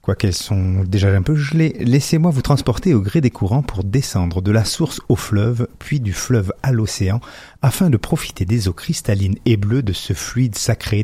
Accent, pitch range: French, 100-130 Hz